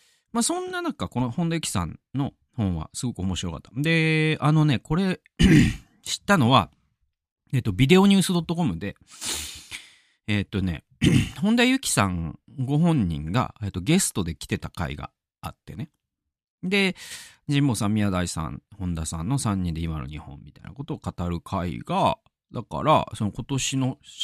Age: 40-59